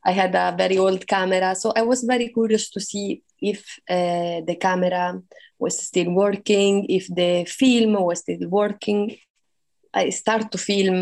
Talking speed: 165 wpm